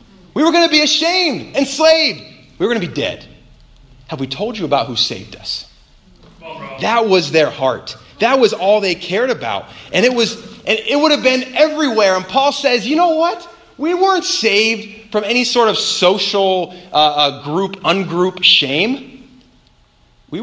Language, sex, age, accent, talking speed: English, male, 30-49, American, 175 wpm